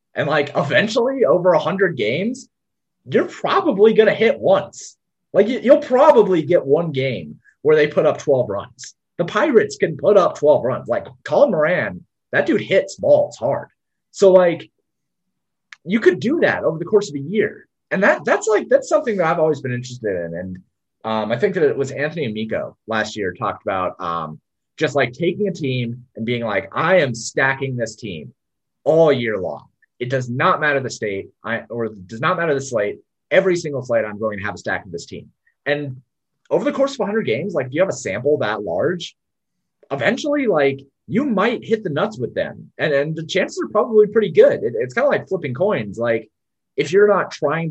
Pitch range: 125-200 Hz